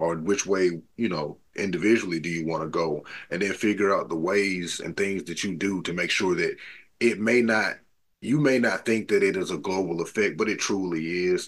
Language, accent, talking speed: English, American, 225 wpm